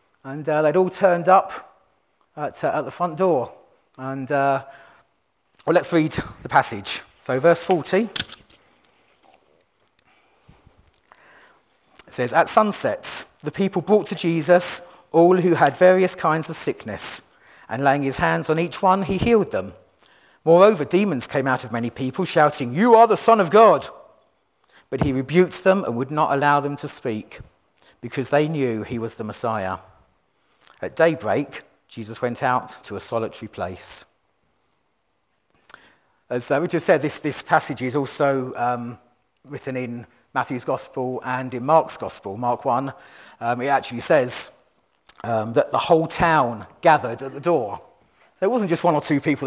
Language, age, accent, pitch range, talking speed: English, 40-59, British, 130-175 Hz, 160 wpm